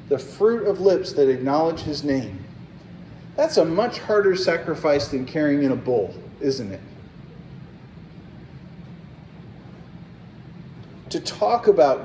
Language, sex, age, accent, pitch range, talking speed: English, male, 40-59, American, 155-205 Hz, 115 wpm